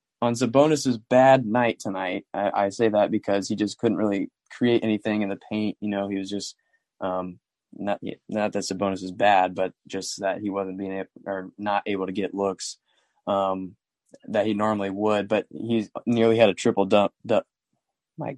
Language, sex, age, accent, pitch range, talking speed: English, male, 20-39, American, 100-115 Hz, 190 wpm